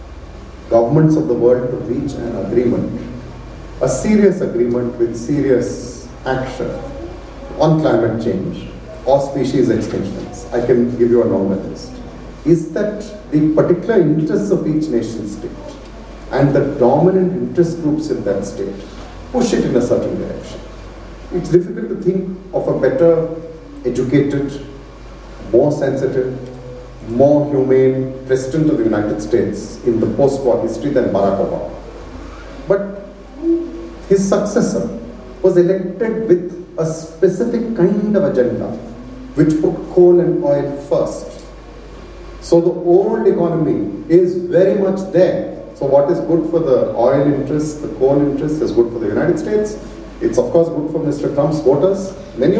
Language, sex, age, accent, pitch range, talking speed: English, male, 40-59, Indian, 130-185 Hz, 145 wpm